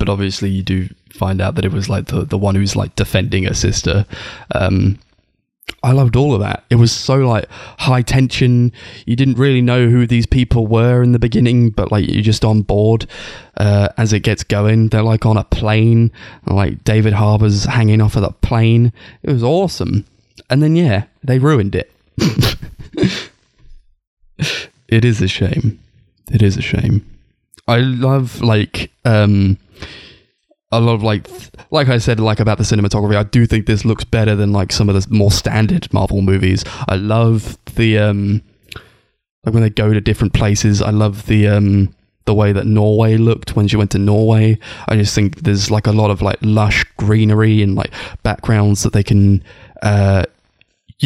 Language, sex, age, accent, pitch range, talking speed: English, male, 20-39, British, 100-115 Hz, 185 wpm